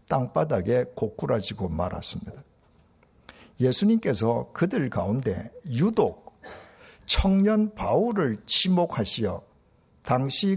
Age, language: 60-79, Korean